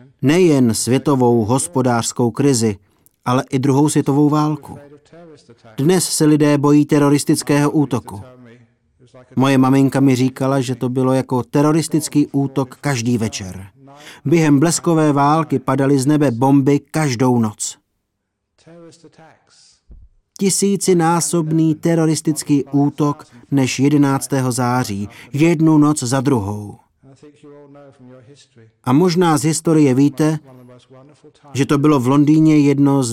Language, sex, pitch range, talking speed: Czech, male, 130-150 Hz, 105 wpm